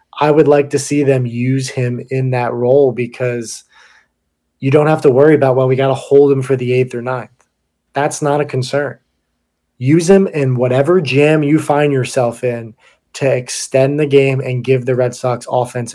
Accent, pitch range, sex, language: American, 125-140 Hz, male, English